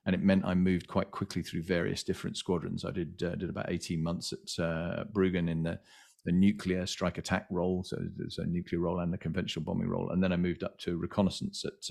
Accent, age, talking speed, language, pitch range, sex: British, 40-59, 230 wpm, English, 85-95 Hz, male